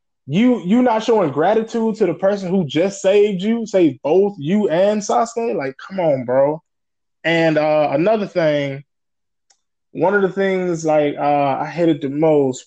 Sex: male